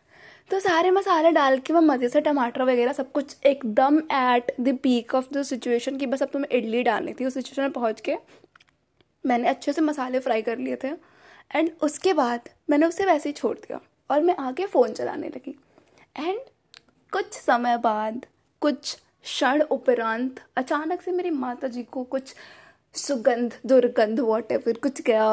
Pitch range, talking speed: 240-310 Hz, 175 wpm